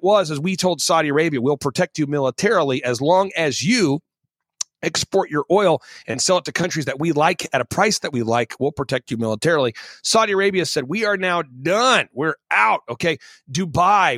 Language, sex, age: English, male, 40-59